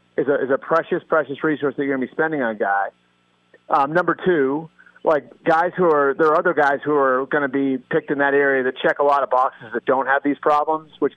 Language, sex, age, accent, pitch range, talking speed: English, male, 40-59, American, 130-155 Hz, 260 wpm